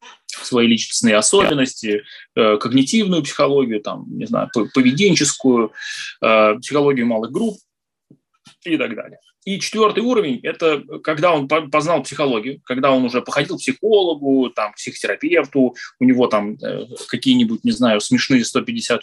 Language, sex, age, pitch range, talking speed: Russian, male, 20-39, 130-205 Hz, 125 wpm